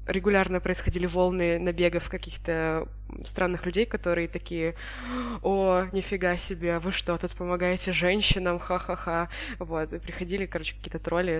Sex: female